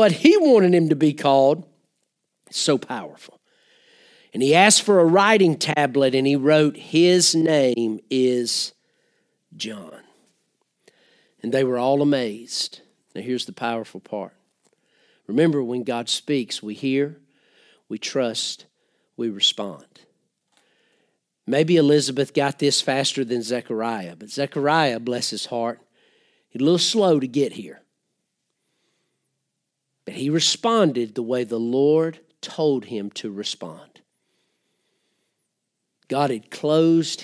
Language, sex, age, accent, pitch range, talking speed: English, male, 50-69, American, 120-160 Hz, 120 wpm